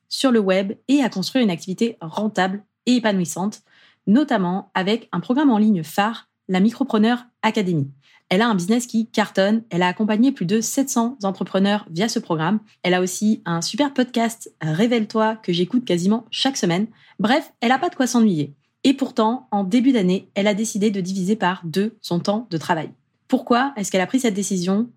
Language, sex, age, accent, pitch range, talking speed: French, female, 20-39, French, 185-235 Hz, 190 wpm